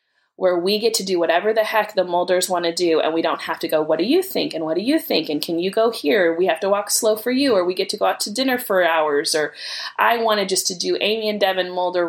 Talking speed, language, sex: 300 wpm, English, female